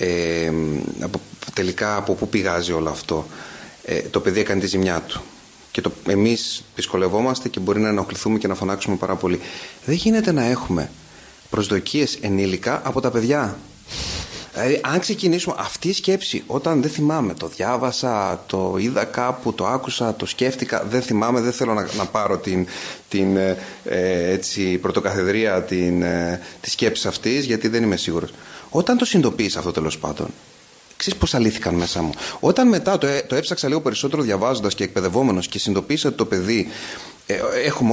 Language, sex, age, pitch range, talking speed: Greek, male, 30-49, 95-130 Hz, 155 wpm